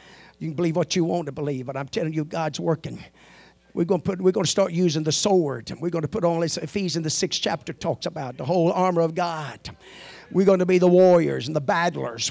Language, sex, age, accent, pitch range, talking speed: English, male, 50-69, American, 175-240 Hz, 250 wpm